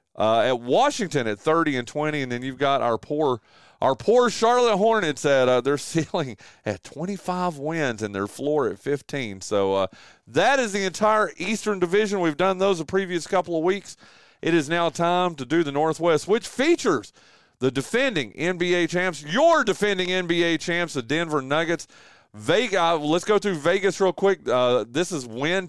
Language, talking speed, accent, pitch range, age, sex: English, 180 wpm, American, 140-195 Hz, 30-49, male